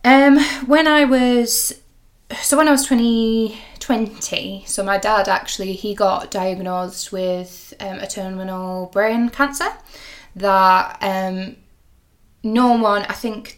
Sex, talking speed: female, 130 wpm